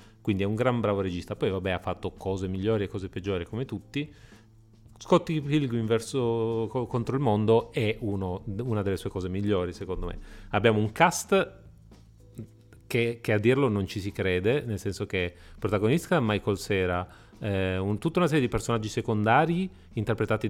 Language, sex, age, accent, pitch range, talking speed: Italian, male, 30-49, native, 100-120 Hz, 175 wpm